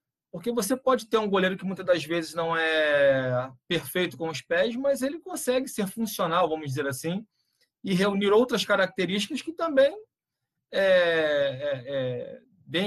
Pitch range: 165-225 Hz